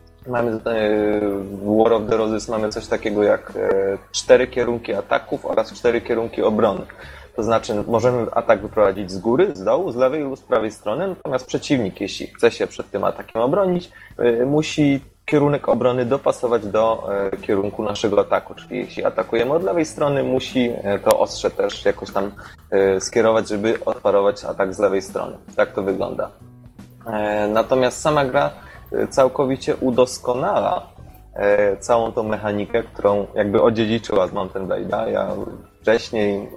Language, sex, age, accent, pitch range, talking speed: Polish, male, 20-39, native, 100-125 Hz, 145 wpm